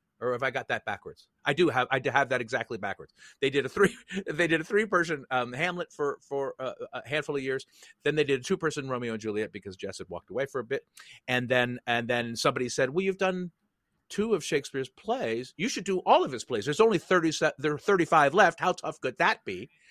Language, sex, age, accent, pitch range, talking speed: English, male, 40-59, American, 120-160 Hz, 245 wpm